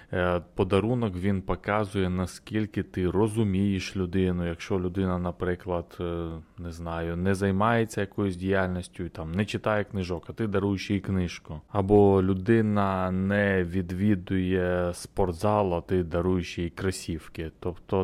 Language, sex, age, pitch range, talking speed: Ukrainian, male, 20-39, 90-105 Hz, 120 wpm